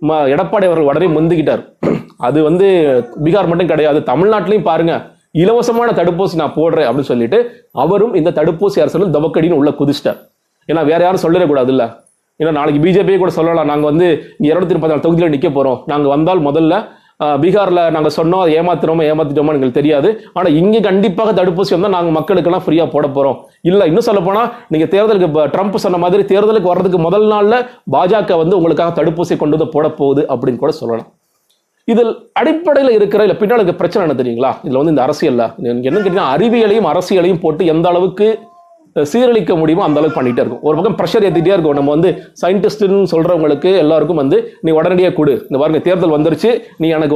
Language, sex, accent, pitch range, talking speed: Tamil, male, native, 155-205 Hz, 140 wpm